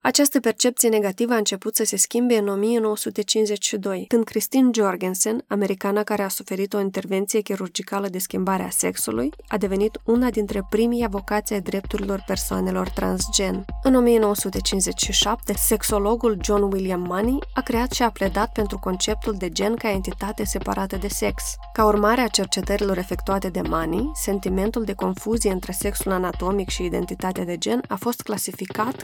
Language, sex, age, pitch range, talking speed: Romanian, female, 20-39, 195-220 Hz, 155 wpm